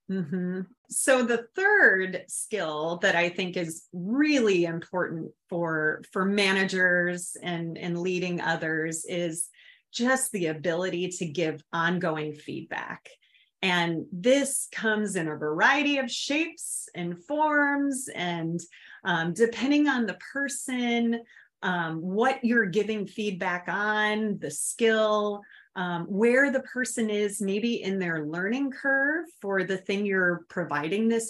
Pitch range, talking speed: 170-225 Hz, 130 wpm